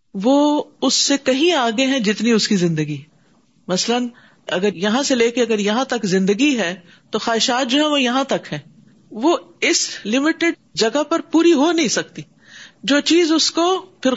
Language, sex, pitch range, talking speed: Urdu, female, 195-265 Hz, 180 wpm